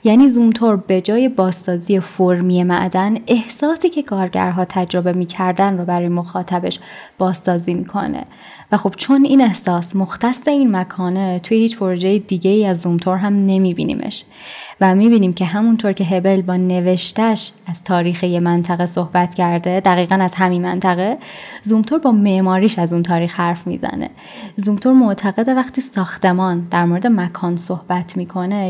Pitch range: 180-215 Hz